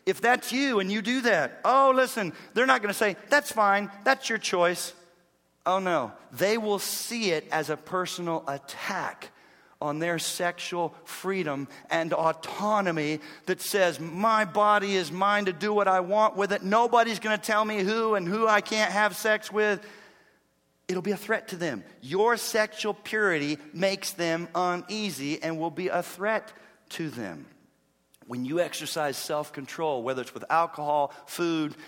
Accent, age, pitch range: American, 40-59, 155-210 Hz